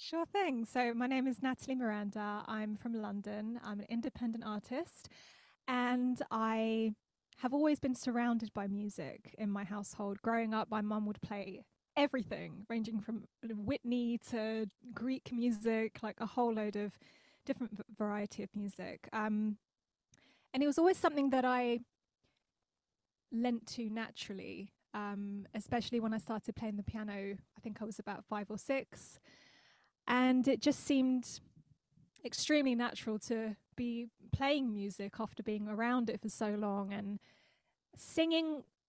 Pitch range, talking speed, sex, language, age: 210-250 Hz, 145 wpm, female, English, 20-39